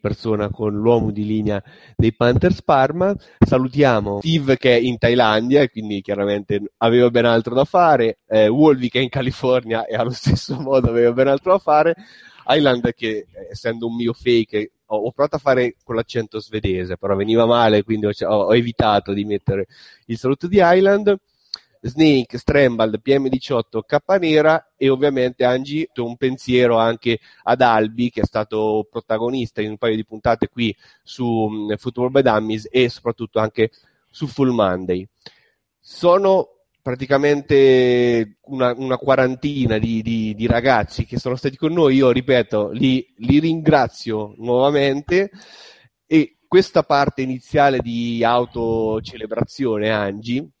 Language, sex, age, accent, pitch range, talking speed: Italian, male, 30-49, native, 110-135 Hz, 145 wpm